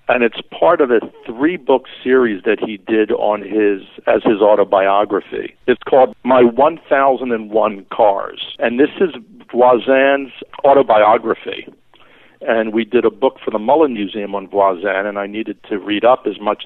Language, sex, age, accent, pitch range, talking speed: English, male, 60-79, American, 100-120 Hz, 175 wpm